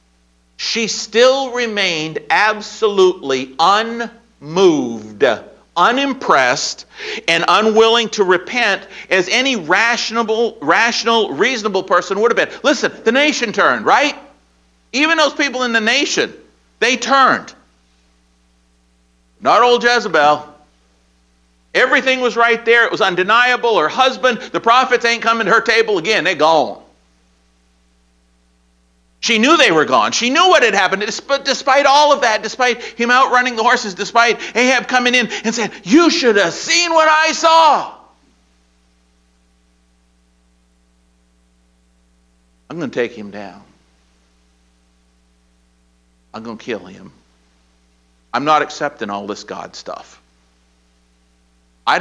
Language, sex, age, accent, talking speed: English, male, 50-69, American, 120 wpm